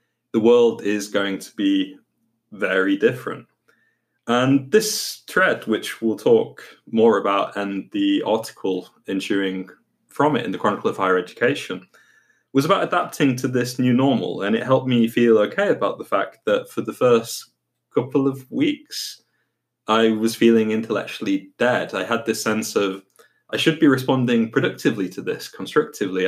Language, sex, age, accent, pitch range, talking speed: English, male, 20-39, British, 105-135 Hz, 160 wpm